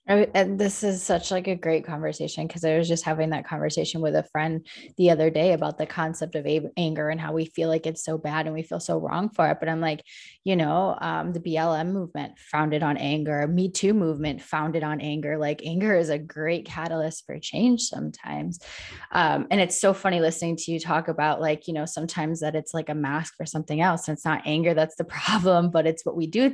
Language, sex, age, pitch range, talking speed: English, female, 20-39, 150-175 Hz, 230 wpm